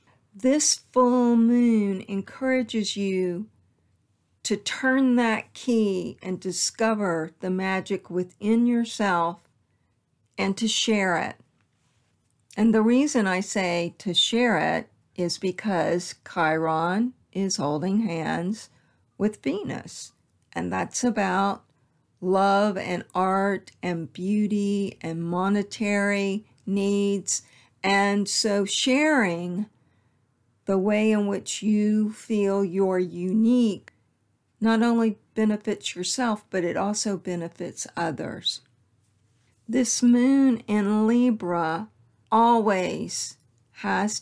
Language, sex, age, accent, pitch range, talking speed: English, female, 50-69, American, 170-215 Hz, 100 wpm